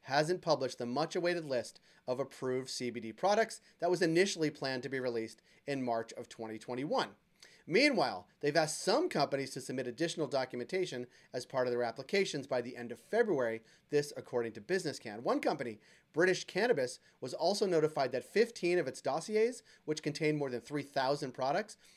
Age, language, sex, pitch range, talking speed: 30-49, English, male, 135-180 Hz, 170 wpm